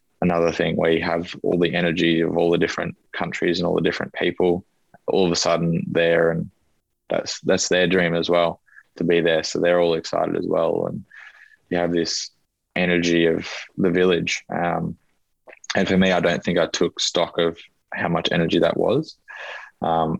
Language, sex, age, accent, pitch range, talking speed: English, male, 20-39, Australian, 85-90 Hz, 190 wpm